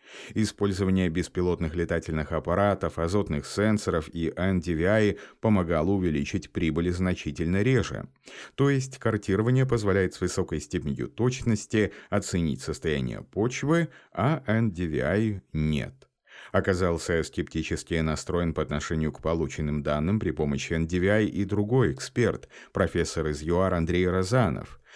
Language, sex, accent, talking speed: Russian, male, native, 110 wpm